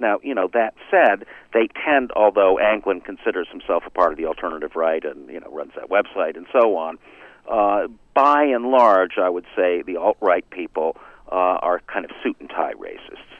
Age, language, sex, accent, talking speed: 50-69, English, male, American, 190 wpm